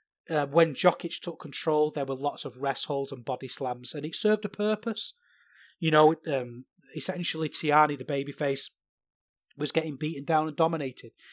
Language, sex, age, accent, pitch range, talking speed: English, male, 30-49, British, 135-160 Hz, 170 wpm